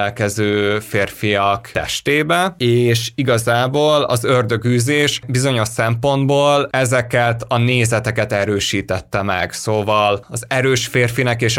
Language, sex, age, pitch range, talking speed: Hungarian, male, 30-49, 105-140 Hz, 100 wpm